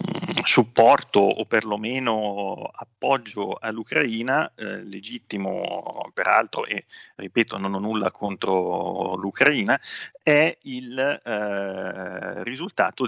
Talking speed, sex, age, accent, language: 85 wpm, male, 30-49, native, Italian